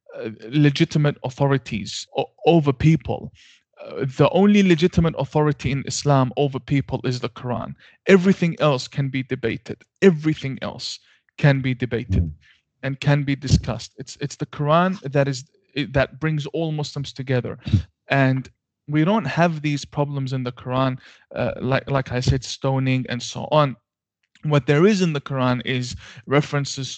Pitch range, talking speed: 125-150 Hz, 150 wpm